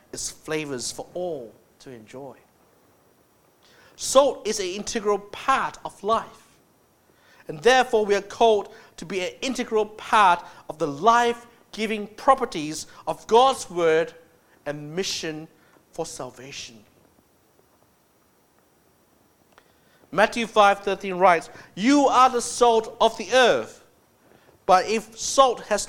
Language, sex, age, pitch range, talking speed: English, male, 50-69, 175-240 Hz, 115 wpm